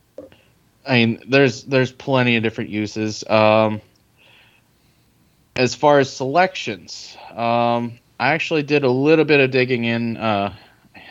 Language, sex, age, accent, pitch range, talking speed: English, male, 20-39, American, 105-120 Hz, 130 wpm